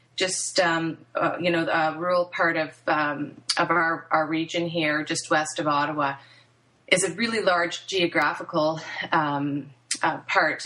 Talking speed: 160 wpm